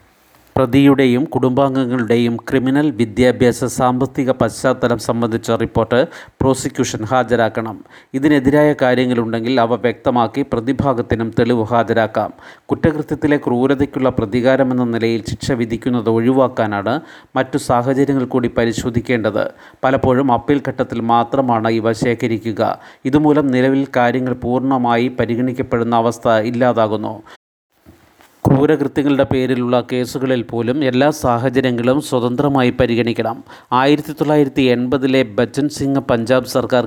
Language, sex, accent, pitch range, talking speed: Malayalam, male, native, 120-135 Hz, 90 wpm